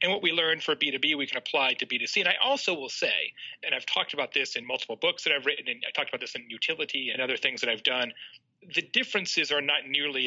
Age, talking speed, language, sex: 40-59, 265 wpm, English, male